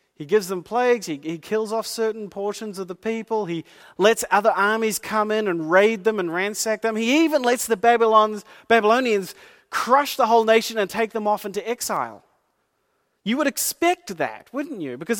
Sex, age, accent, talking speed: male, 40-59, Australian, 190 wpm